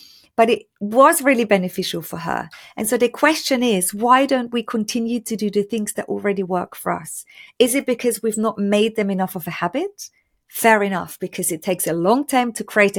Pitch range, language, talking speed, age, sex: 185-230 Hz, English, 215 wpm, 40-59, female